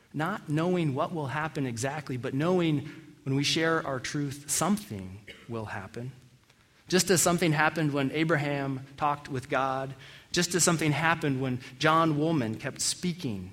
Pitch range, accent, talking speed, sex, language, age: 130-180 Hz, American, 150 wpm, male, English, 30-49